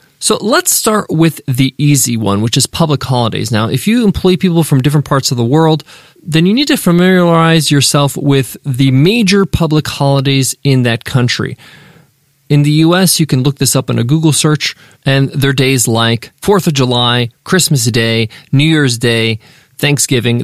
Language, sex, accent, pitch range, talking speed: English, male, American, 135-185 Hz, 180 wpm